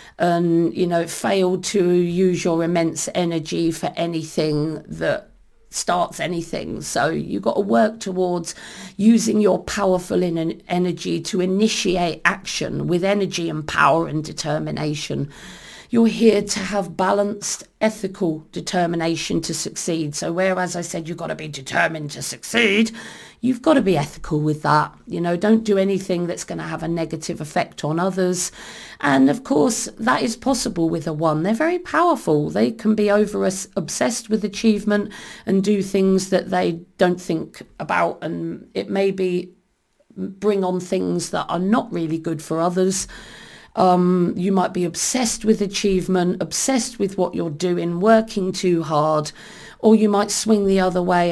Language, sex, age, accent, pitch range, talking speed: English, female, 50-69, British, 165-205 Hz, 160 wpm